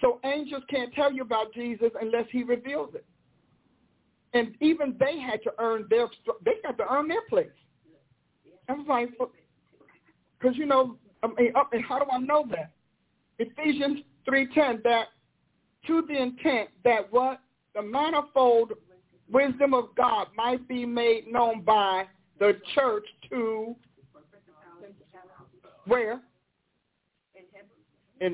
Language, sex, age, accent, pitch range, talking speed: English, male, 50-69, American, 200-270 Hz, 110 wpm